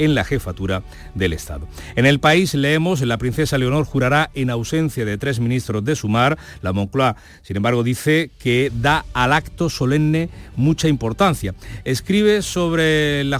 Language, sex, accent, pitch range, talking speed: Spanish, male, Spanish, 105-150 Hz, 155 wpm